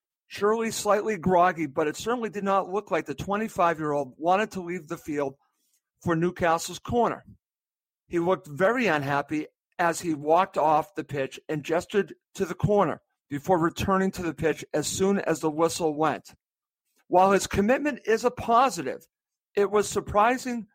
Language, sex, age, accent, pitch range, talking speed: English, male, 50-69, American, 155-195 Hz, 165 wpm